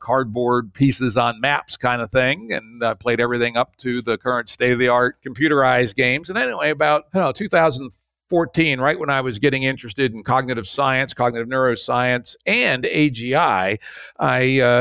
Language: English